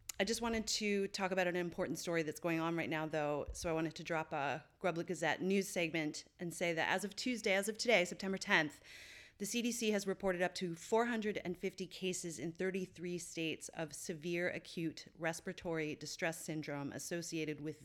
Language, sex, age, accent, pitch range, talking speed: English, female, 30-49, American, 160-195 Hz, 185 wpm